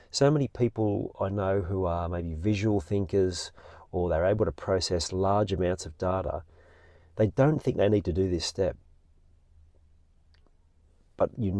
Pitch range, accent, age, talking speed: 80-100 Hz, Australian, 40-59, 155 wpm